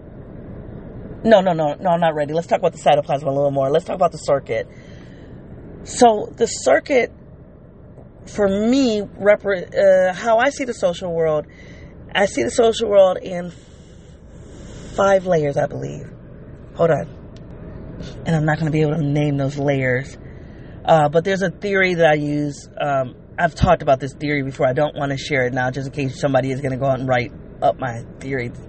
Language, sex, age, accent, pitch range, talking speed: English, female, 30-49, American, 135-185 Hz, 190 wpm